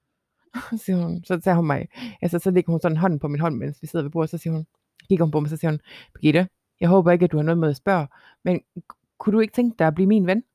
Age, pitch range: 30-49, 150-195 Hz